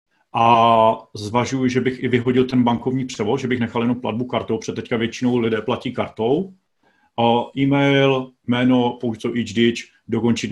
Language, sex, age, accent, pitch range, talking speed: Czech, male, 40-59, native, 110-125 Hz, 145 wpm